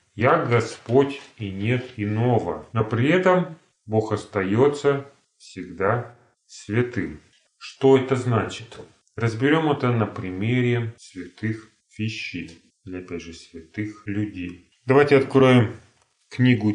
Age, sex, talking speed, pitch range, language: 30-49, male, 105 wpm, 95-125 Hz, Russian